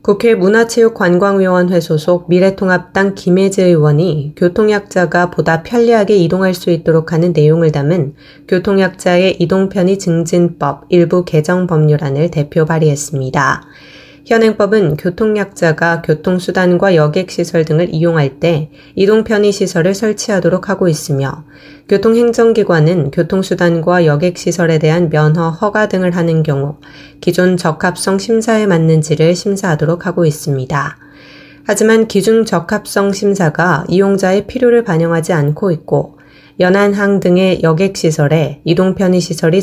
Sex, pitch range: female, 155-195 Hz